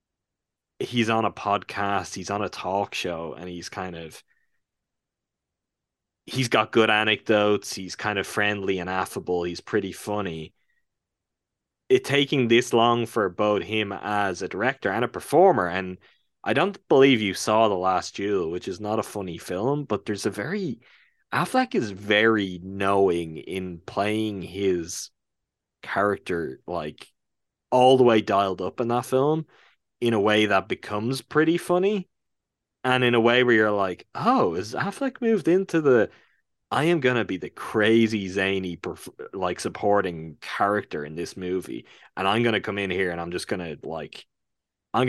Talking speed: 165 wpm